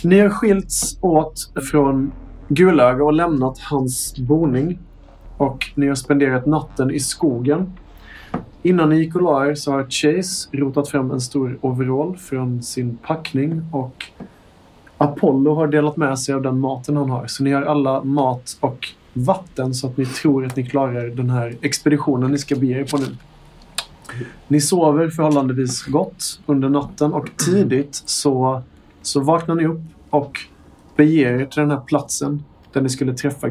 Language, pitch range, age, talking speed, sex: Swedish, 130-150 Hz, 30-49, 160 wpm, male